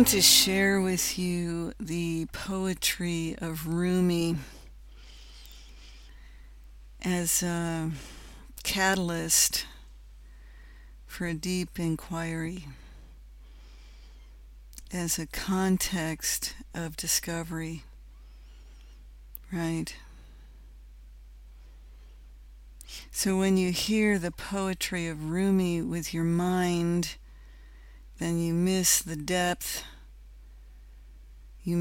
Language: English